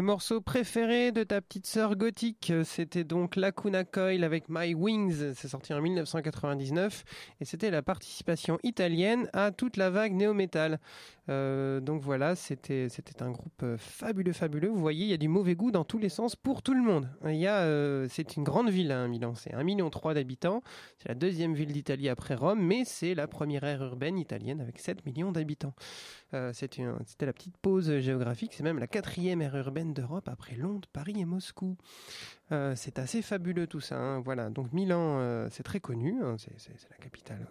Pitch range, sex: 135-190 Hz, male